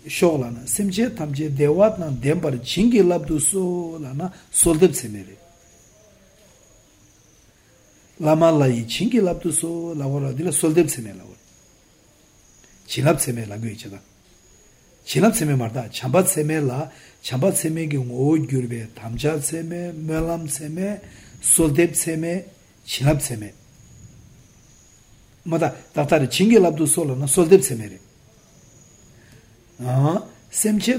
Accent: Indian